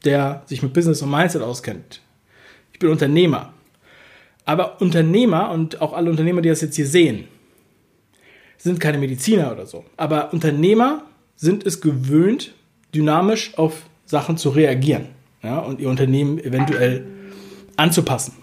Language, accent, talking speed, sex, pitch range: German, German, 135 wpm, male, 145-195 Hz